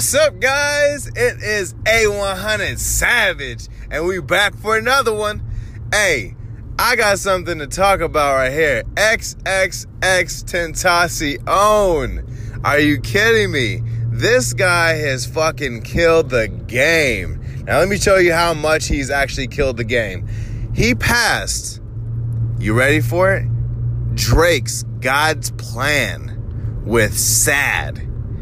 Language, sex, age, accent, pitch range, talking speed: English, male, 20-39, American, 115-165 Hz, 120 wpm